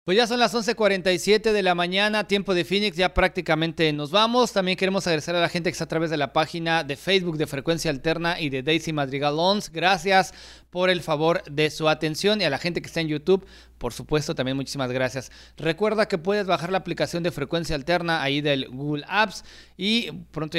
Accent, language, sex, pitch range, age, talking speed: Mexican, English, male, 135-185 Hz, 40-59, 210 wpm